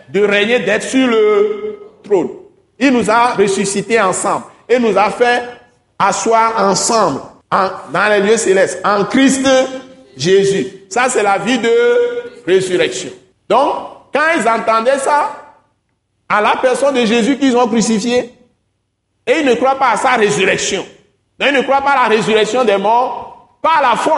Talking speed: 160 wpm